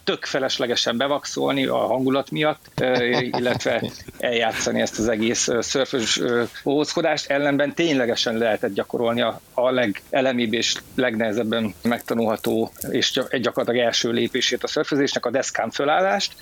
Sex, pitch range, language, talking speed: male, 120-145 Hz, Hungarian, 115 wpm